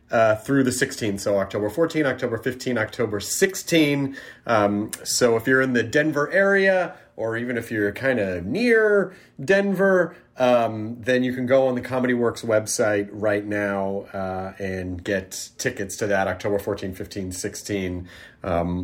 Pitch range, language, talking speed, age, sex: 105-165 Hz, English, 160 wpm, 30-49, male